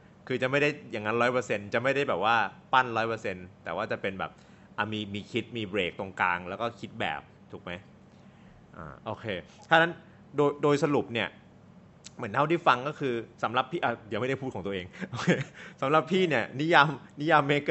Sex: male